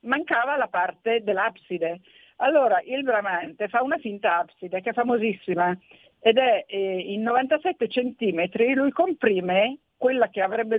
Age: 50-69